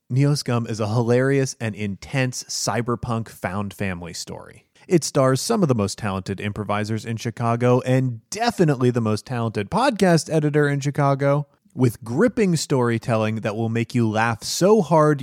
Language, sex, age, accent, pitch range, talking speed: English, male, 30-49, American, 110-165 Hz, 155 wpm